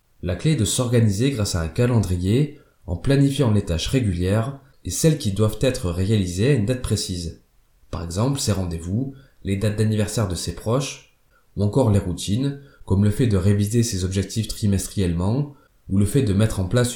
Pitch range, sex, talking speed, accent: 95-130 Hz, male, 190 wpm, French